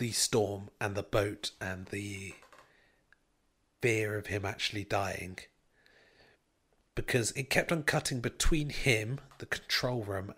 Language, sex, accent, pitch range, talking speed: English, male, British, 105-135 Hz, 125 wpm